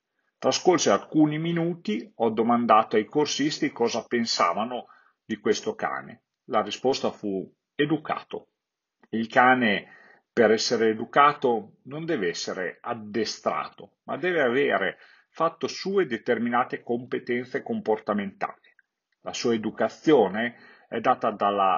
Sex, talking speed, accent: male, 105 wpm, native